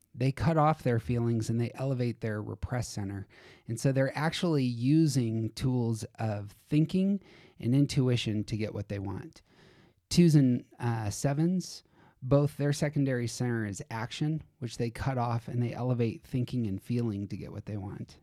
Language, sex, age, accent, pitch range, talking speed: English, male, 30-49, American, 105-130 Hz, 170 wpm